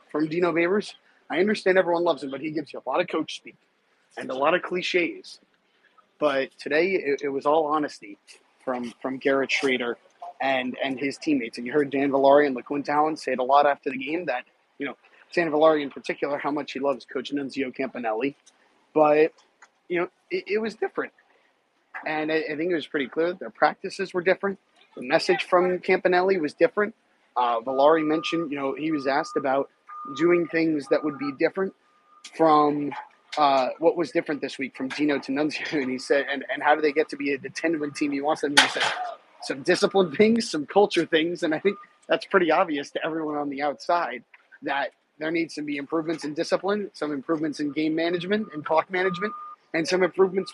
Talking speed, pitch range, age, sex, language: 205 wpm, 145-185 Hz, 30-49, male, English